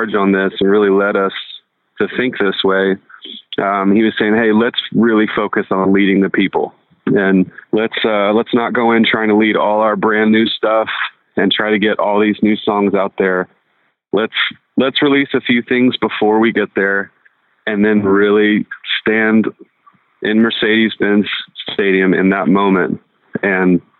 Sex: male